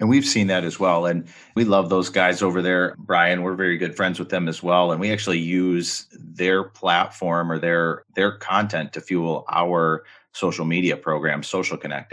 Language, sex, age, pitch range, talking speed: English, male, 30-49, 80-90 Hz, 200 wpm